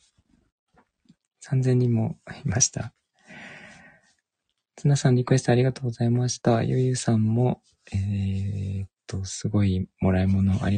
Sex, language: male, Japanese